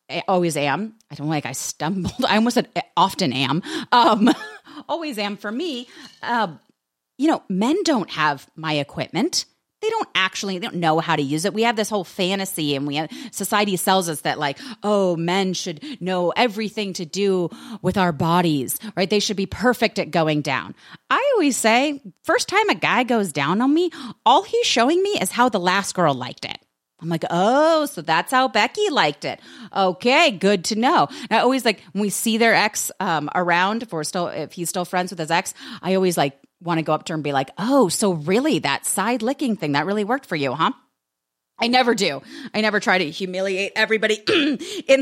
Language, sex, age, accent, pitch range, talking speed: English, female, 30-49, American, 170-245 Hz, 210 wpm